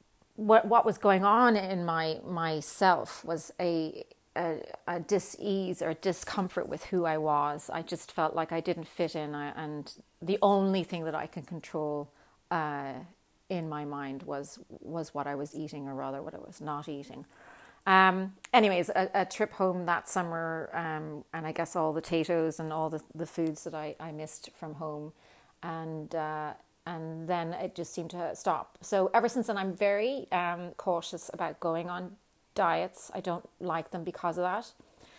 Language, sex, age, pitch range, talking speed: English, female, 30-49, 160-185 Hz, 185 wpm